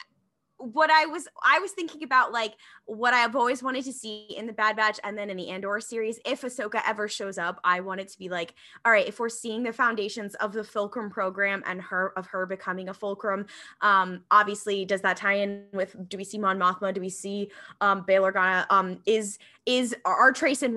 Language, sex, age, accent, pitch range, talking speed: English, female, 20-39, American, 195-250 Hz, 220 wpm